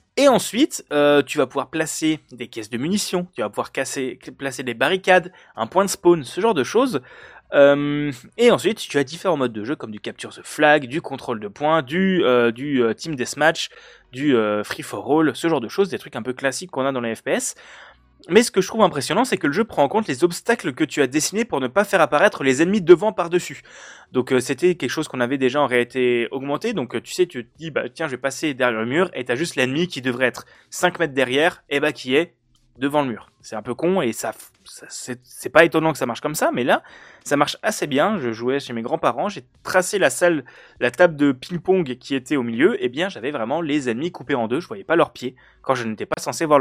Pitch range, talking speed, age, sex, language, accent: 125-175 Hz, 250 wpm, 20-39, male, French, French